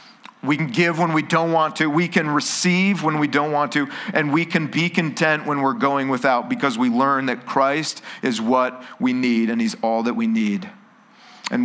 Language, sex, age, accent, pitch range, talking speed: English, male, 40-59, American, 130-180 Hz, 210 wpm